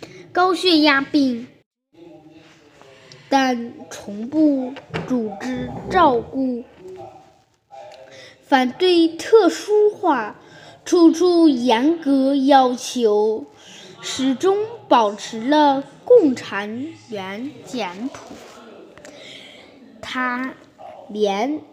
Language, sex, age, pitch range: Chinese, female, 10-29, 240-330 Hz